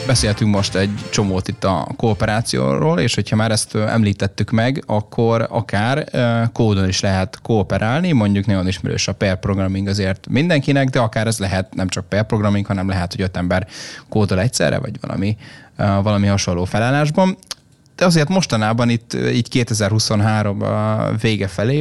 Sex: male